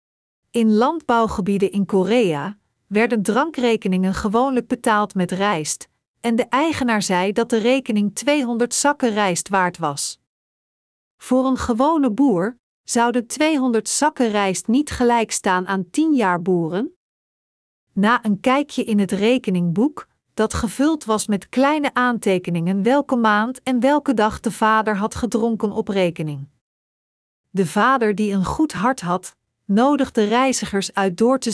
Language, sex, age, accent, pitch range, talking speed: Dutch, female, 40-59, Dutch, 195-250 Hz, 135 wpm